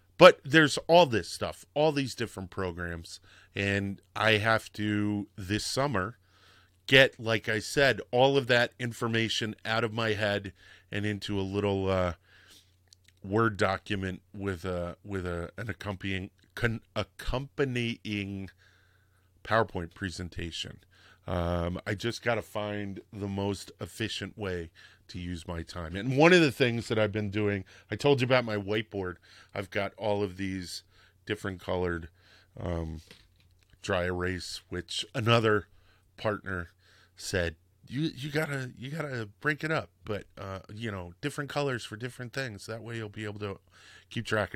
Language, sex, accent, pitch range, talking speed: English, male, American, 90-115 Hz, 150 wpm